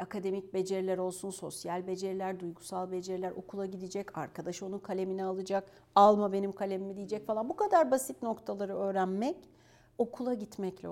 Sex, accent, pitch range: female, native, 185-240 Hz